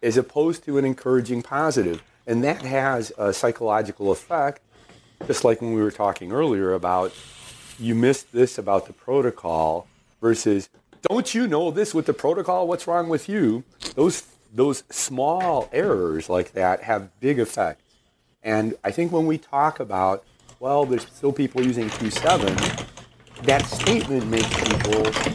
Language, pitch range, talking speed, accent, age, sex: English, 95-130 Hz, 150 wpm, American, 40-59, male